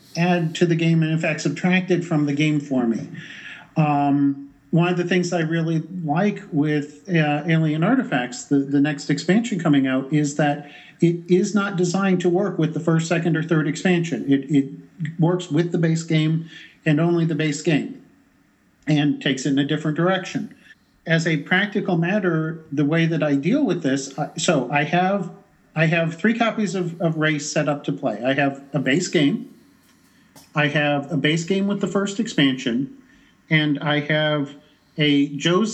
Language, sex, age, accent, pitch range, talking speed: English, male, 50-69, American, 145-180 Hz, 185 wpm